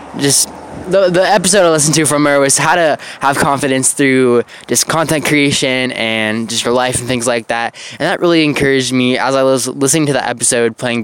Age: 10-29